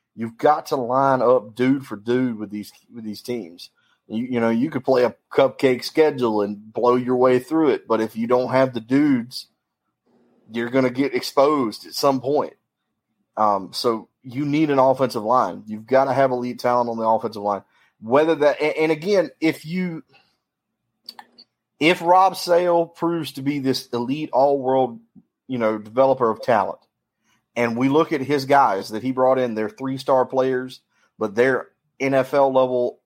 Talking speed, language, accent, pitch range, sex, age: 175 wpm, English, American, 115-140 Hz, male, 30-49